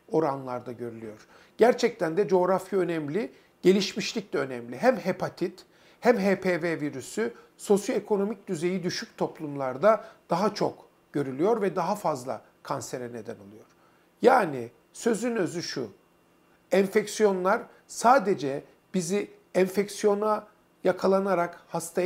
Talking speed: 100 wpm